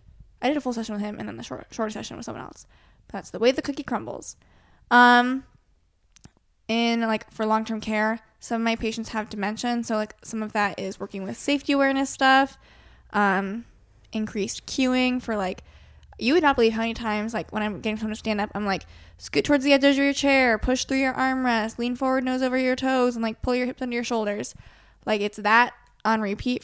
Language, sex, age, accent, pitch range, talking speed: English, female, 20-39, American, 205-250 Hz, 220 wpm